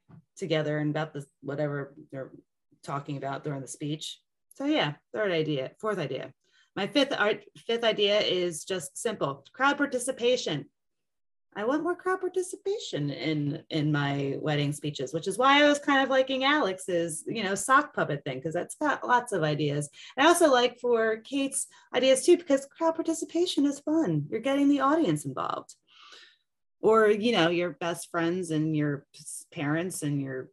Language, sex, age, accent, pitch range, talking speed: English, female, 30-49, American, 155-250 Hz, 170 wpm